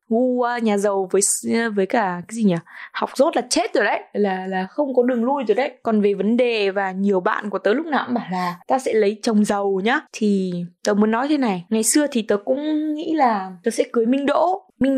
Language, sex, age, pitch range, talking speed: Vietnamese, female, 20-39, 195-255 Hz, 250 wpm